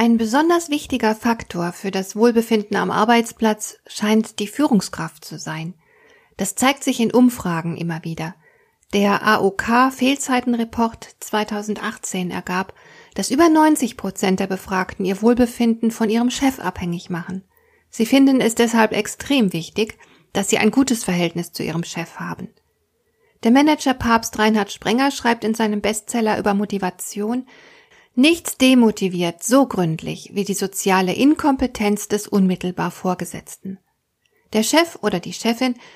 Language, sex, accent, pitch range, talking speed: German, female, German, 200-255 Hz, 130 wpm